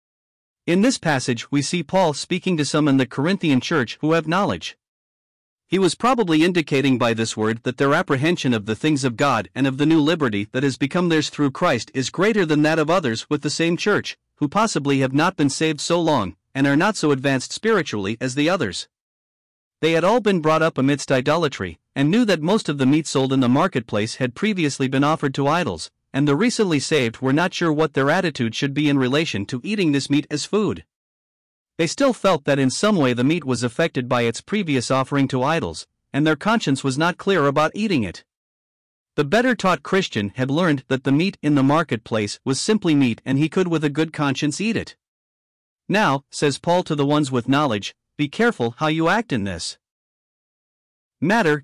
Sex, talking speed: male, 210 wpm